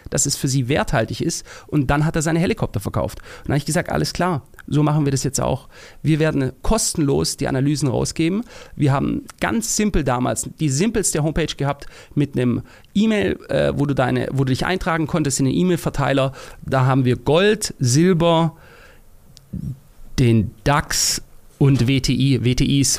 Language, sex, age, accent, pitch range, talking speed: German, male, 40-59, German, 125-160 Hz, 170 wpm